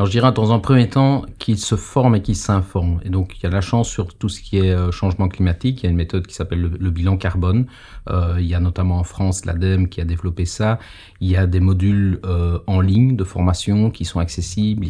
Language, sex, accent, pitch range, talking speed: French, male, French, 90-105 Hz, 255 wpm